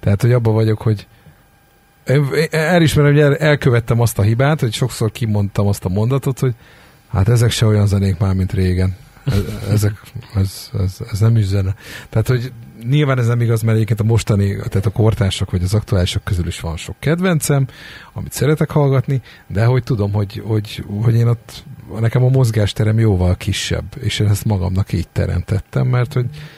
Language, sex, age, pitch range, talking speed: Hungarian, male, 50-69, 100-140 Hz, 180 wpm